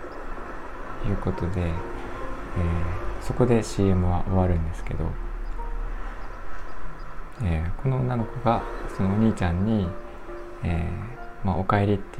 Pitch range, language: 90-115 Hz, Japanese